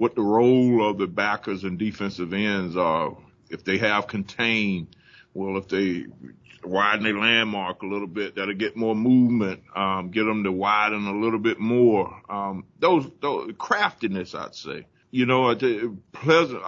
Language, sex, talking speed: English, male, 160 wpm